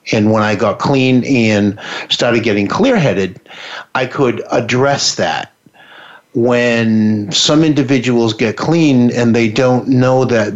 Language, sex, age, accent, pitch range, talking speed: English, male, 50-69, American, 110-140 Hz, 135 wpm